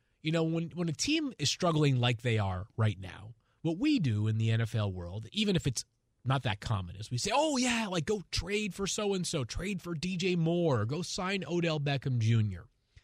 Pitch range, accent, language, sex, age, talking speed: 115-175 Hz, American, English, male, 30-49, 205 wpm